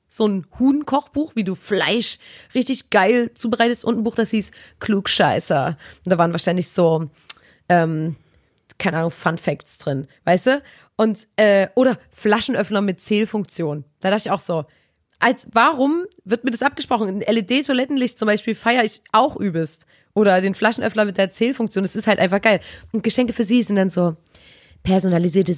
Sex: female